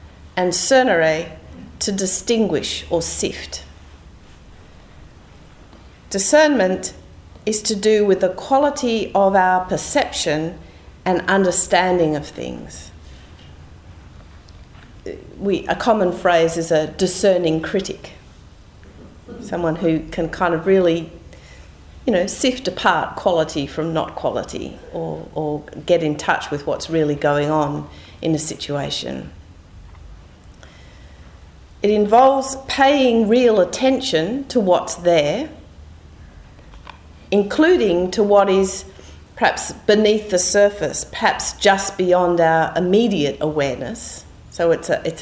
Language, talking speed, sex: English, 105 wpm, female